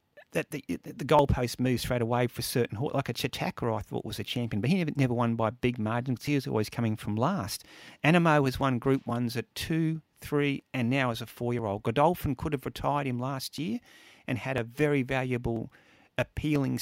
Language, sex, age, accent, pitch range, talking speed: English, male, 40-59, Australian, 115-140 Hz, 205 wpm